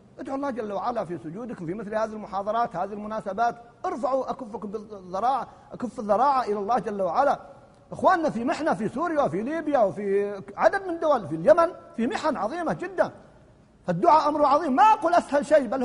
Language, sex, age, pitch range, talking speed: Arabic, male, 50-69, 220-330 Hz, 175 wpm